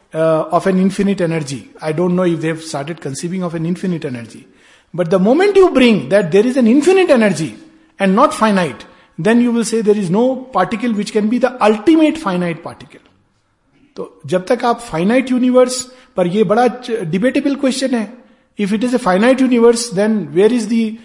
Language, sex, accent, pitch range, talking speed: Hindi, male, native, 180-250 Hz, 195 wpm